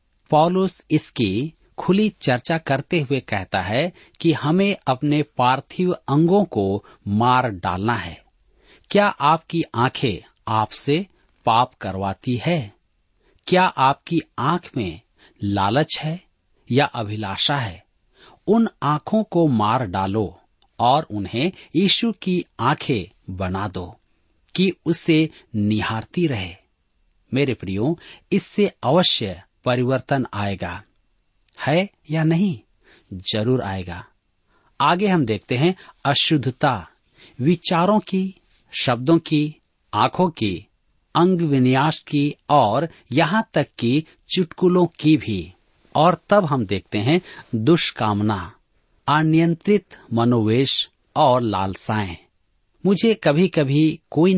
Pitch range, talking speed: 110-170 Hz, 105 wpm